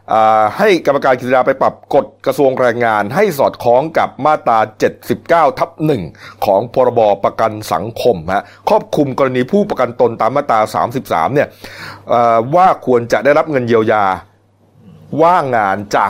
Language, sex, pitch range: Thai, male, 105-130 Hz